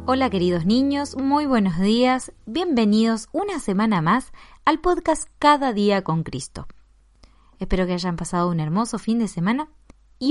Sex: female